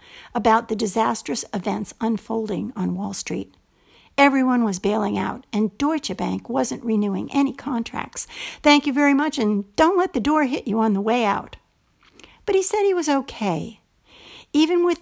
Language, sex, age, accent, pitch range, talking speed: English, female, 60-79, American, 215-280 Hz, 170 wpm